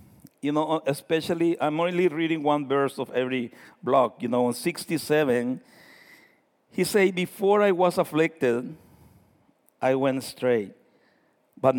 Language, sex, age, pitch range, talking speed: English, male, 60-79, 145-180 Hz, 125 wpm